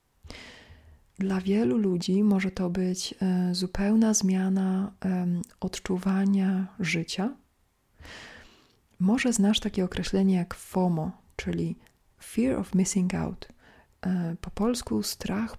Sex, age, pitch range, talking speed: female, 40-59, 180-200 Hz, 90 wpm